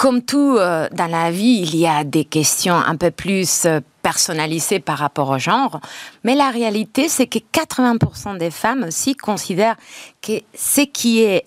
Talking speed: 180 wpm